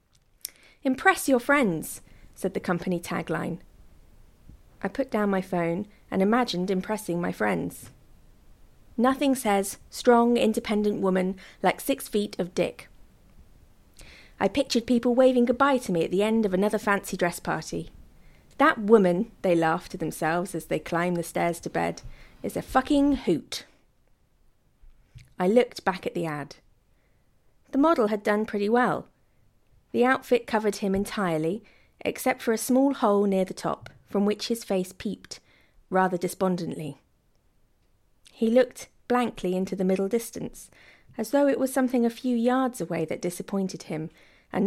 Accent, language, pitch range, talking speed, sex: British, English, 180-245 Hz, 150 wpm, female